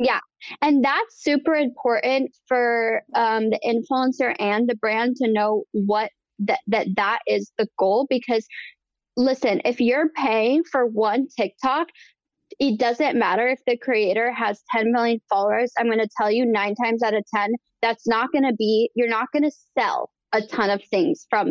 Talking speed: 180 wpm